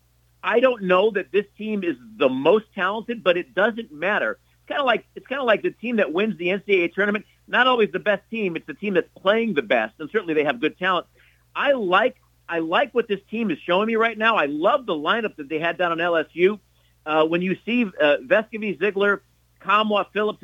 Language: English